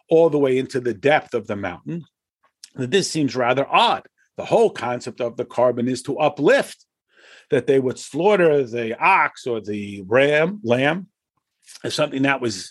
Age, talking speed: 50-69, 175 wpm